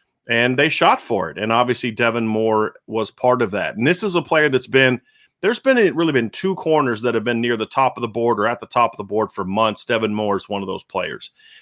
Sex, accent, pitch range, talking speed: male, American, 110-130 Hz, 270 wpm